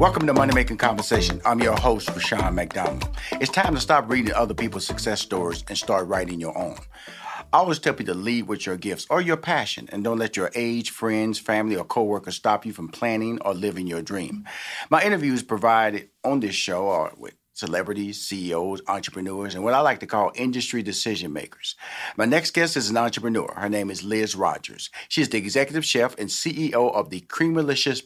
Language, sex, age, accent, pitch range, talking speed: English, male, 40-59, American, 105-140 Hz, 200 wpm